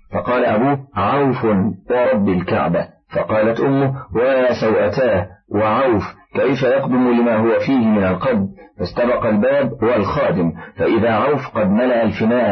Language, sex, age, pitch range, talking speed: Arabic, male, 40-59, 105-130 Hz, 120 wpm